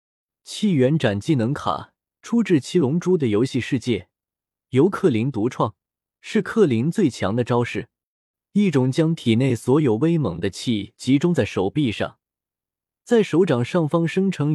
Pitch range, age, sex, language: 110-165 Hz, 20-39, male, Chinese